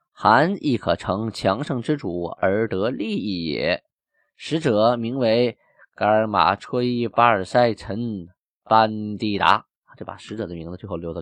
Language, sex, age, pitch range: Chinese, male, 20-39, 95-125 Hz